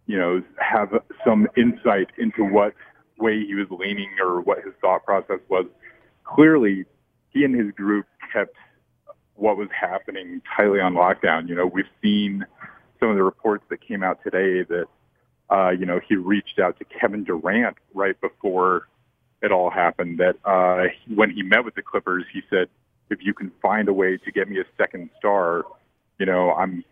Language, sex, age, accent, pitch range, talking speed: English, male, 40-59, American, 95-125 Hz, 180 wpm